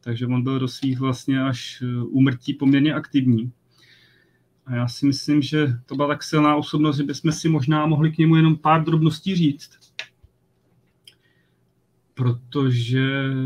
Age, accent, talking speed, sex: 30-49, native, 145 wpm, male